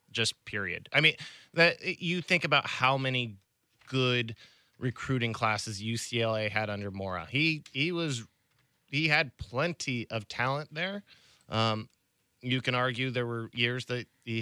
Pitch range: 115-160 Hz